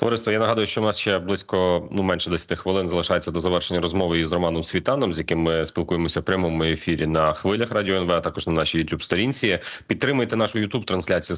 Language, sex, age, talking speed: Ukrainian, male, 30-49, 200 wpm